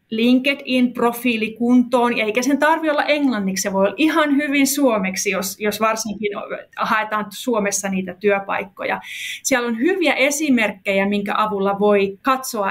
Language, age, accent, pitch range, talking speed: Finnish, 30-49, native, 205-270 Hz, 125 wpm